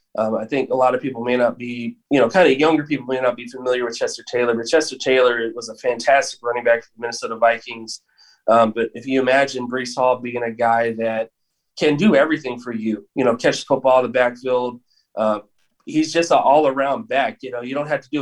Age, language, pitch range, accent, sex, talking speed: 20-39, English, 120-145 Hz, American, male, 235 wpm